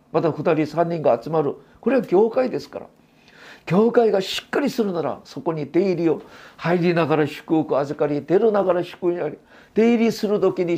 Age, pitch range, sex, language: 50-69, 145-215 Hz, male, Japanese